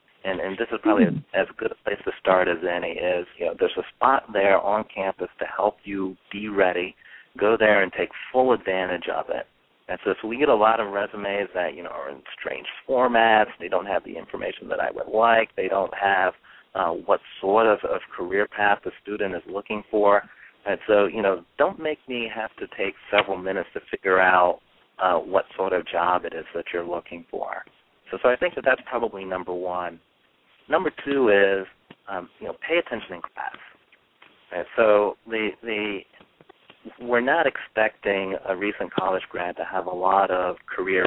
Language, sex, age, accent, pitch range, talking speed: English, male, 40-59, American, 95-110 Hz, 200 wpm